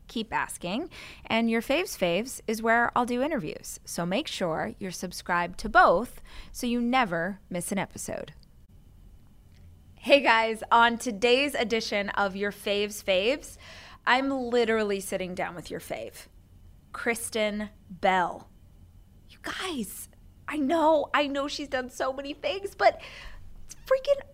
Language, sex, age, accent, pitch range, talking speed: English, female, 20-39, American, 190-270 Hz, 135 wpm